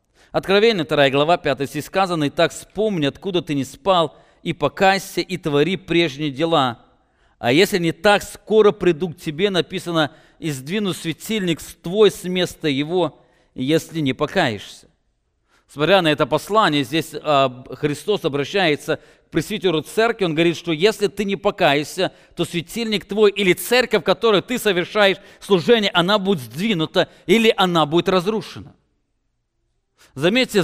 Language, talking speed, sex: English, 145 wpm, male